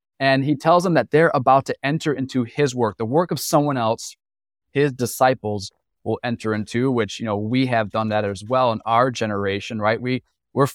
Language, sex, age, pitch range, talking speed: English, male, 20-39, 120-155 Hz, 205 wpm